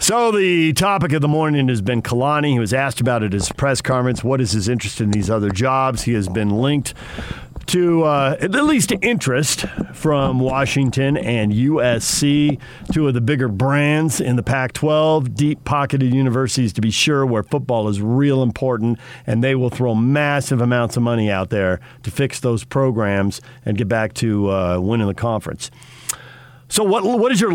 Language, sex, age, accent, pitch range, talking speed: English, male, 50-69, American, 115-145 Hz, 185 wpm